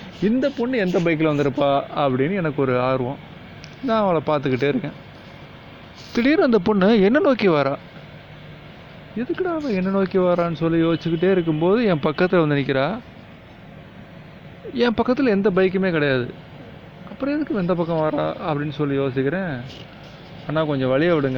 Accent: native